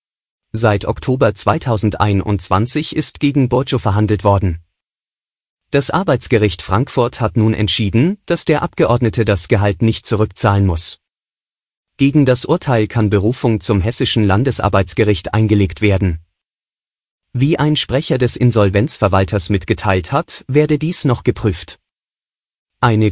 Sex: male